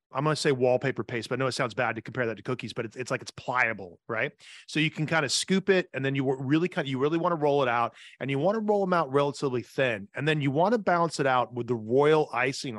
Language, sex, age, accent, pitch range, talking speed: English, male, 30-49, American, 120-145 Hz, 295 wpm